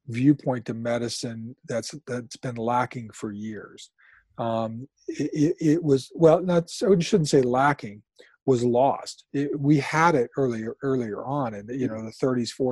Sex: male